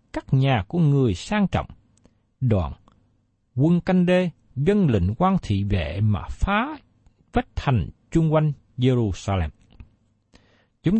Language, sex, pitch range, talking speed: Vietnamese, male, 105-175 Hz, 125 wpm